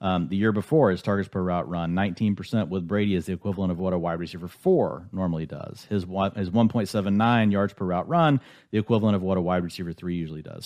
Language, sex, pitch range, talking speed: English, male, 90-110 Hz, 230 wpm